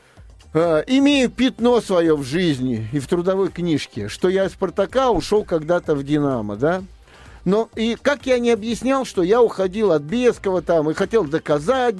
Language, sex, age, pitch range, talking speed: Russian, male, 50-69, 165-230 Hz, 165 wpm